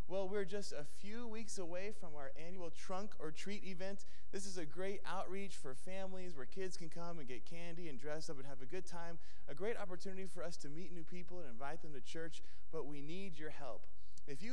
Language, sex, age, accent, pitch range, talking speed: English, male, 20-39, American, 120-165 Hz, 235 wpm